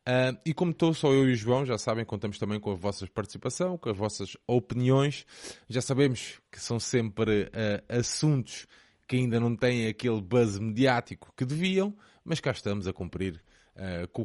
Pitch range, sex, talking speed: 100-120 Hz, male, 175 wpm